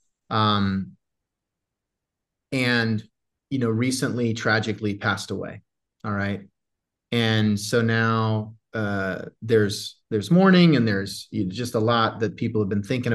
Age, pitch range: 30-49, 105-130 Hz